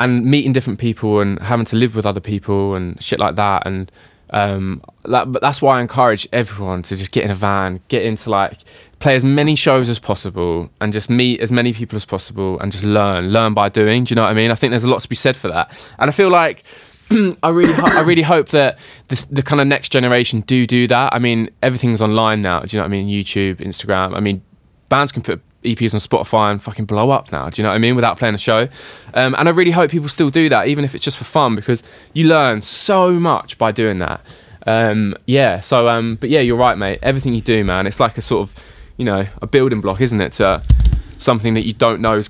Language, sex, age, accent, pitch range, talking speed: English, male, 20-39, British, 100-130 Hz, 255 wpm